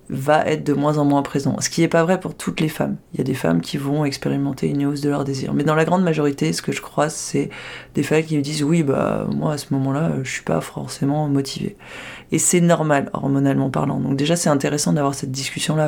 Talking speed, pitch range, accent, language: 265 wpm, 140-155 Hz, French, French